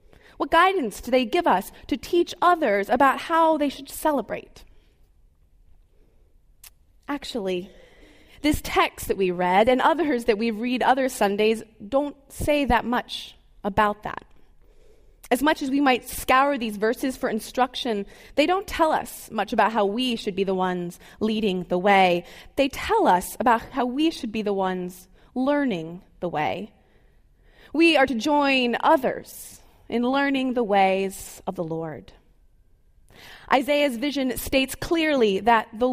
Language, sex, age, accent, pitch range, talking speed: English, female, 20-39, American, 200-285 Hz, 150 wpm